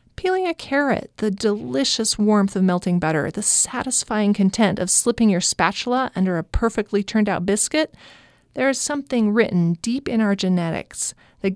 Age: 40-59